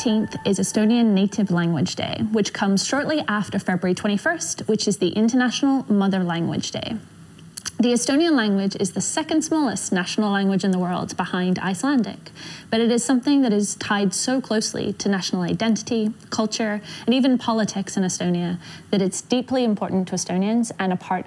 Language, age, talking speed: English, 10-29, 165 wpm